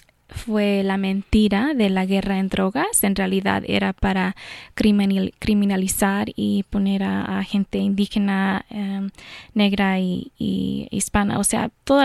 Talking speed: 135 wpm